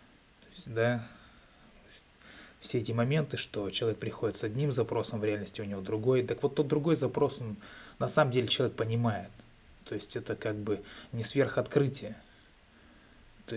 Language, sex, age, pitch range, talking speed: Russian, male, 20-39, 110-140 Hz, 145 wpm